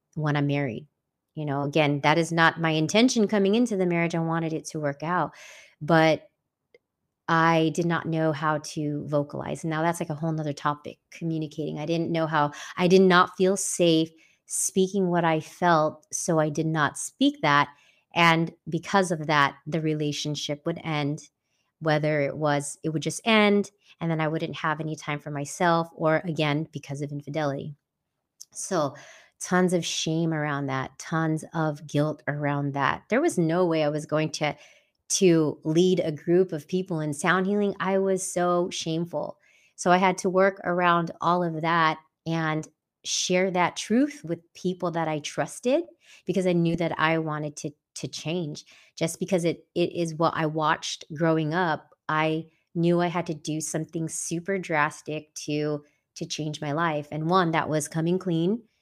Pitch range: 150-175 Hz